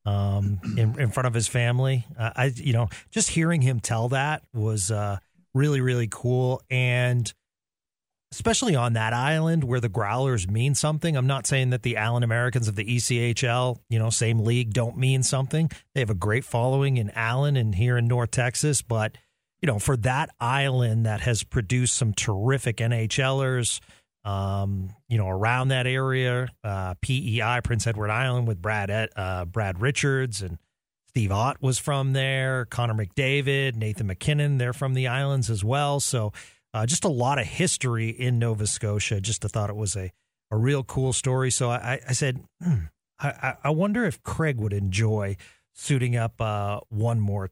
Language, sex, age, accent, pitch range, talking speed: English, male, 40-59, American, 110-135 Hz, 180 wpm